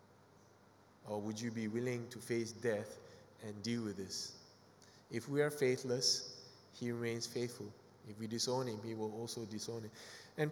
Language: English